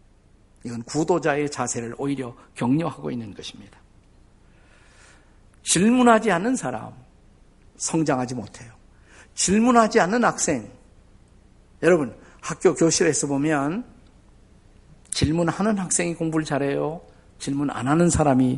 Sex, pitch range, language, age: male, 105-155 Hz, Korean, 50-69